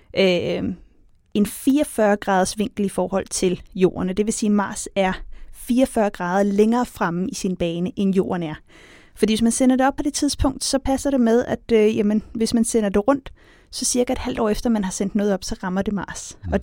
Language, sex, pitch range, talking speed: Danish, female, 185-230 Hz, 220 wpm